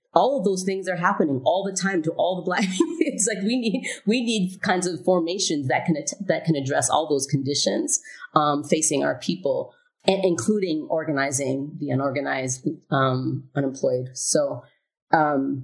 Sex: female